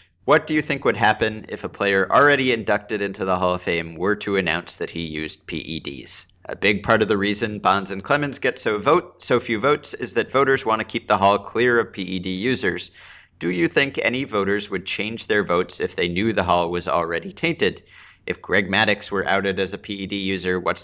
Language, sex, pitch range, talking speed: English, male, 90-105 Hz, 220 wpm